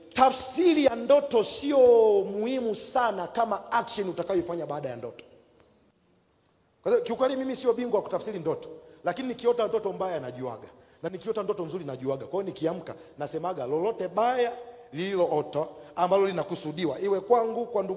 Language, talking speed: English, 160 wpm